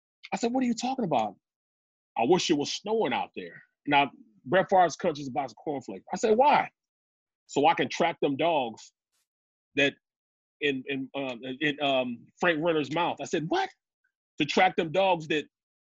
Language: English